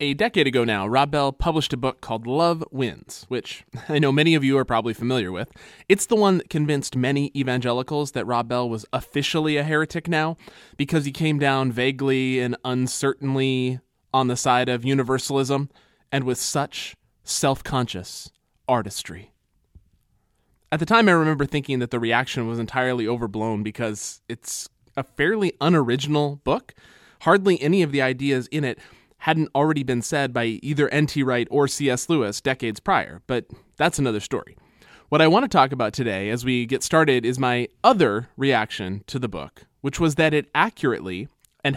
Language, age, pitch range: English, 20-39, 125-155 Hz